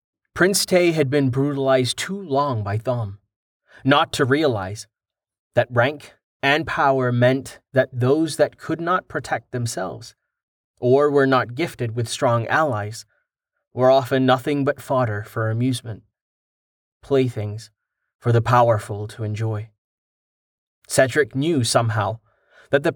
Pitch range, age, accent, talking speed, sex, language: 115-140 Hz, 30-49, American, 130 wpm, male, English